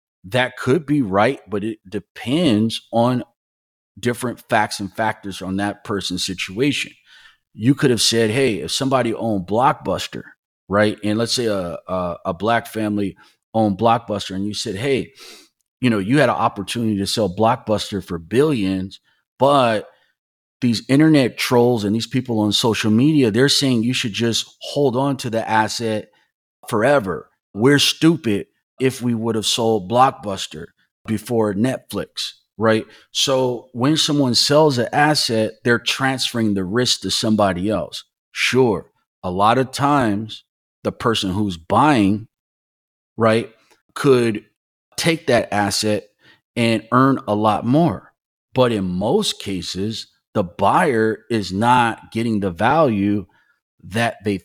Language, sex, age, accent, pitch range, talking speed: English, male, 30-49, American, 100-125 Hz, 140 wpm